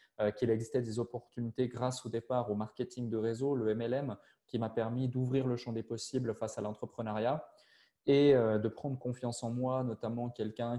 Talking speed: 180 wpm